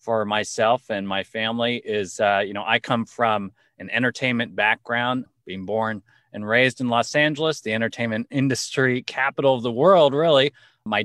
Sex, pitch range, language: male, 110-135 Hz, English